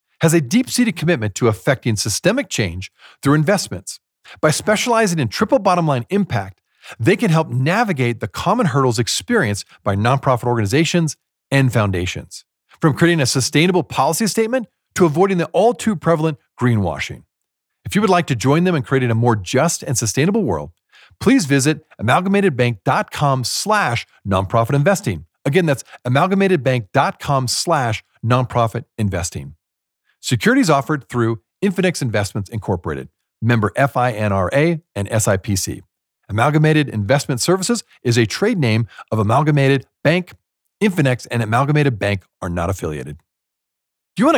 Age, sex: 40-59, male